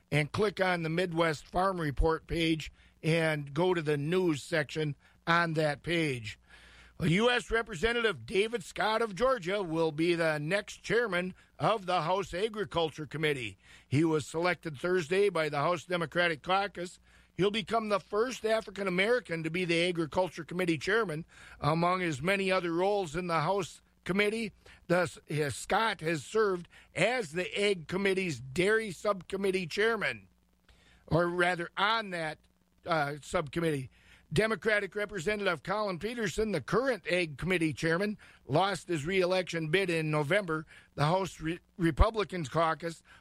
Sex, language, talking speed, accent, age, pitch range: male, English, 140 wpm, American, 50-69, 155-195 Hz